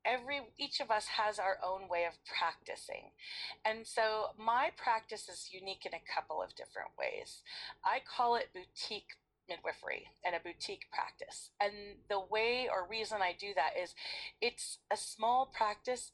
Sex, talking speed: female, 165 wpm